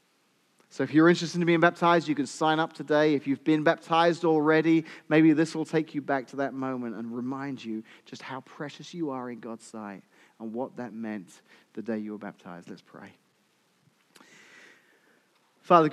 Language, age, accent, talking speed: English, 30-49, British, 185 wpm